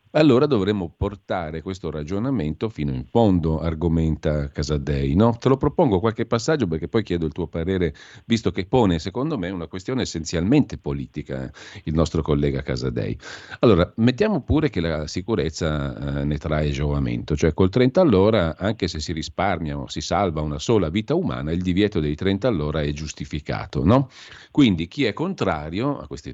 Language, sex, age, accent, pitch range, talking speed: Italian, male, 50-69, native, 75-95 Hz, 170 wpm